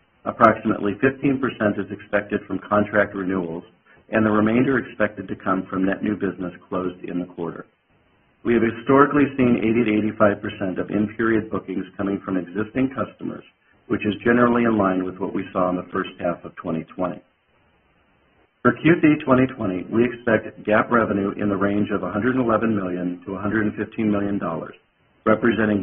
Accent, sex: American, male